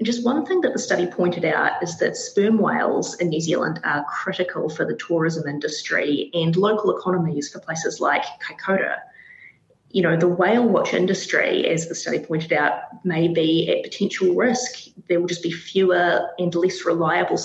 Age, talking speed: 20-39, 180 wpm